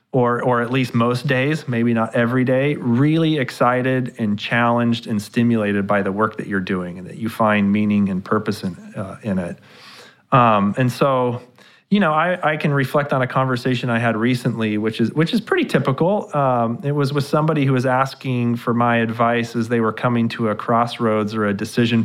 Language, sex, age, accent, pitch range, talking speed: English, male, 30-49, American, 110-130 Hz, 205 wpm